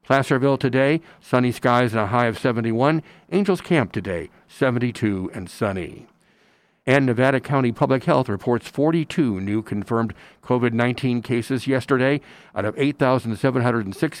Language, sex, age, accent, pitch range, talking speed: English, male, 60-79, American, 115-140 Hz, 125 wpm